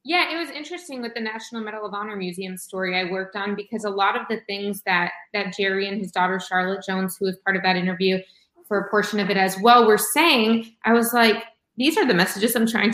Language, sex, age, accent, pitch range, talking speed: English, female, 20-39, American, 195-230 Hz, 245 wpm